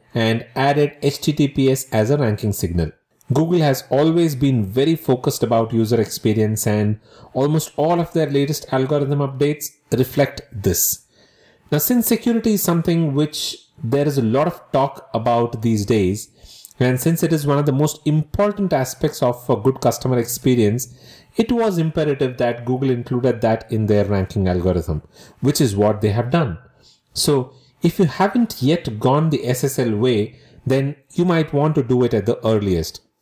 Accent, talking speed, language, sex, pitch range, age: Indian, 165 wpm, English, male, 115-150 Hz, 30-49